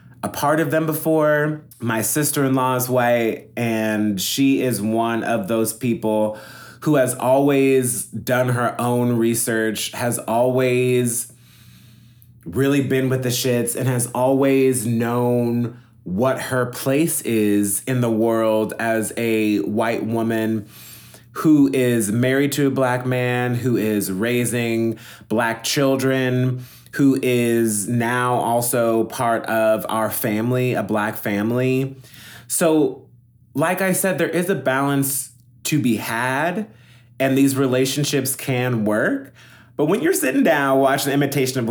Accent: American